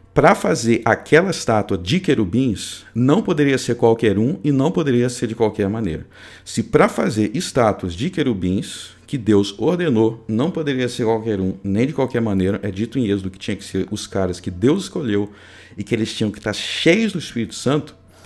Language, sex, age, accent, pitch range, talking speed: Portuguese, male, 50-69, Brazilian, 100-135 Hz, 195 wpm